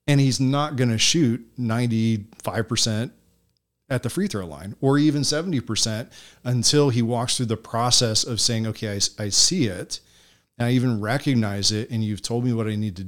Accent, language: American, English